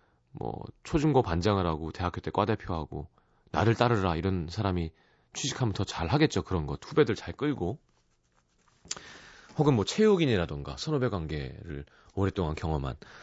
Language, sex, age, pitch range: Korean, male, 30-49, 75-125 Hz